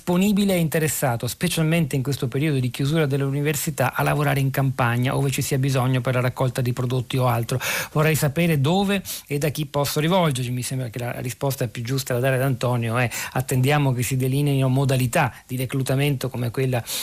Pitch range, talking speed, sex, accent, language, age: 125-145 Hz, 190 wpm, male, native, Italian, 40-59